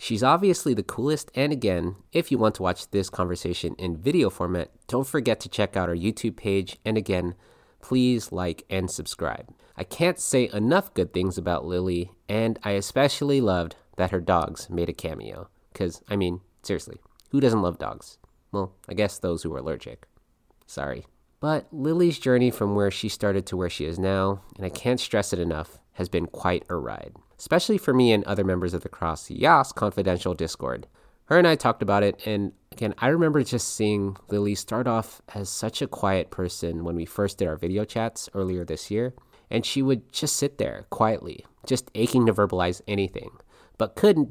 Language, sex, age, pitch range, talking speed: English, male, 30-49, 90-120 Hz, 195 wpm